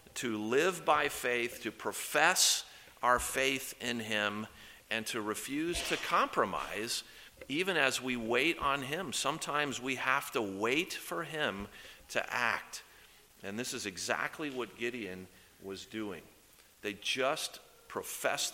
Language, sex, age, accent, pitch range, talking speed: English, male, 40-59, American, 105-140 Hz, 135 wpm